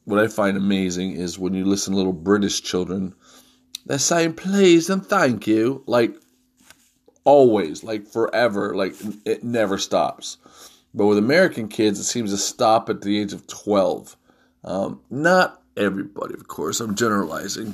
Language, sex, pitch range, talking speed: English, male, 100-125 Hz, 155 wpm